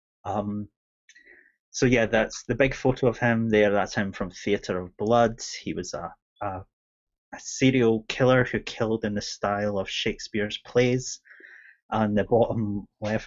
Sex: male